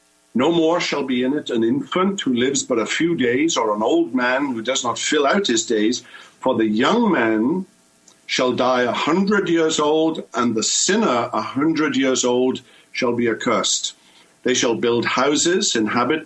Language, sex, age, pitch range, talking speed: English, male, 50-69, 105-155 Hz, 185 wpm